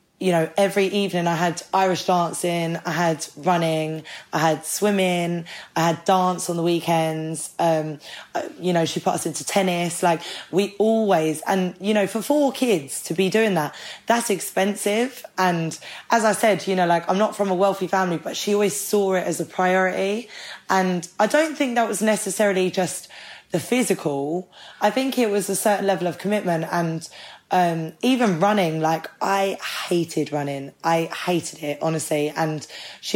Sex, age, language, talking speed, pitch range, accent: female, 10-29, English, 175 wpm, 165-195 Hz, British